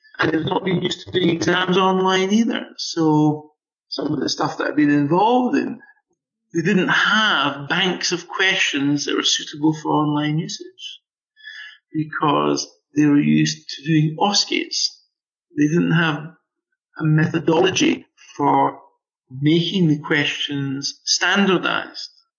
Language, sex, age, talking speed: English, male, 50-69, 130 wpm